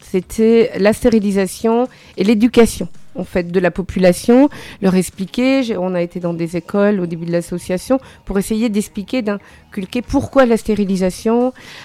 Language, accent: French, French